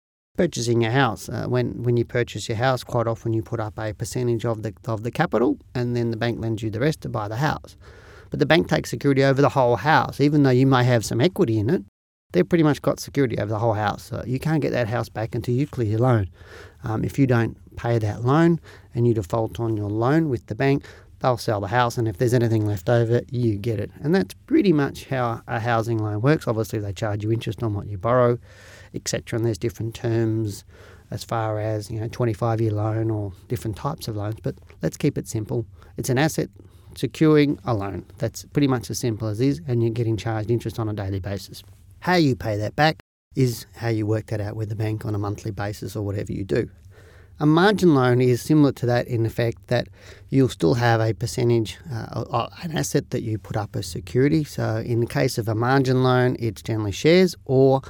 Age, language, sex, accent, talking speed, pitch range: 40-59, English, male, Australian, 230 wpm, 110-130 Hz